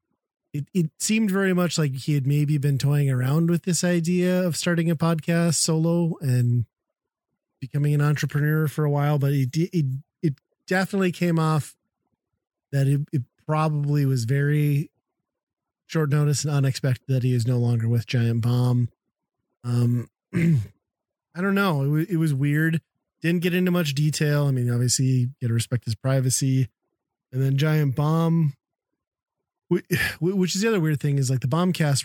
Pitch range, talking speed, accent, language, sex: 130-165 Hz, 165 wpm, American, English, male